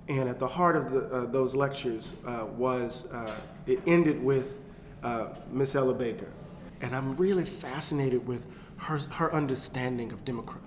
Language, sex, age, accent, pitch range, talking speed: English, male, 40-59, American, 135-185 Hz, 165 wpm